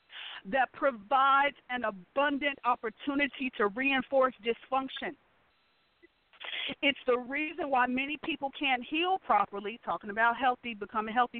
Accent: American